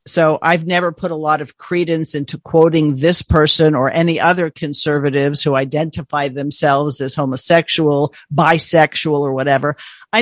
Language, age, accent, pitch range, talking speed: English, 50-69, American, 150-180 Hz, 145 wpm